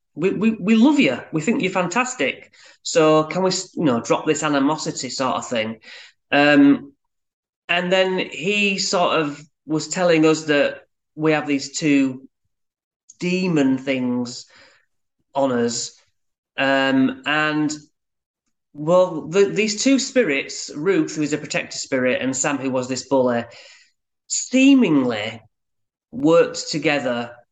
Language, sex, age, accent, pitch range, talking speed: English, male, 30-49, British, 135-185 Hz, 130 wpm